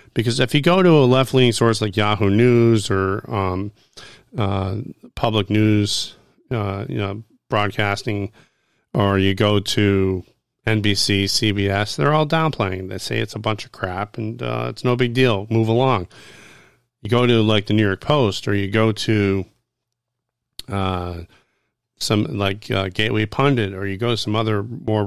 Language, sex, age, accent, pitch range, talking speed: English, male, 40-59, American, 100-125 Hz, 165 wpm